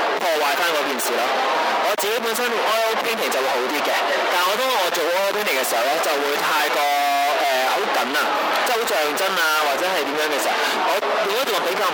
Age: 20-39